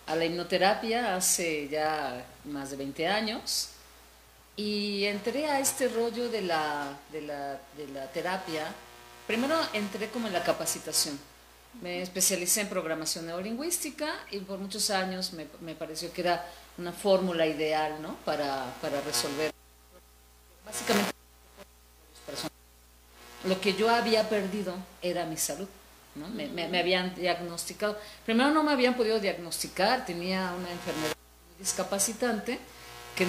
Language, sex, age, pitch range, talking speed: Spanish, female, 40-59, 155-210 Hz, 135 wpm